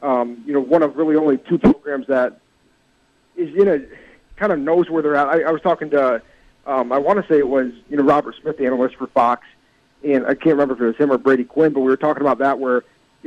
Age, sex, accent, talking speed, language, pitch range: 40-59, male, American, 270 wpm, English, 135-165 Hz